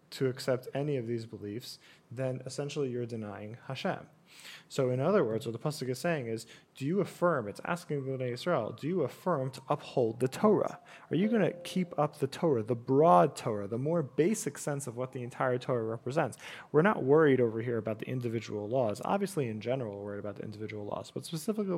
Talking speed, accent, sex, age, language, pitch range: 205 wpm, American, male, 30-49, English, 115-155 Hz